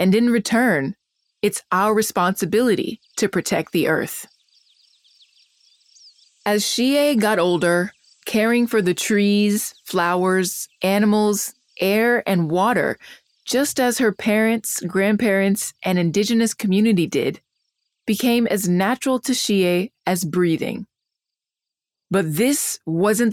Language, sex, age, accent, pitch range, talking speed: English, female, 20-39, American, 180-225 Hz, 110 wpm